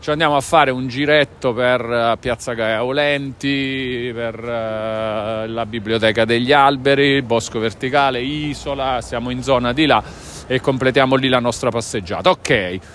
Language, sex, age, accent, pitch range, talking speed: Italian, male, 40-59, native, 115-150 Hz, 140 wpm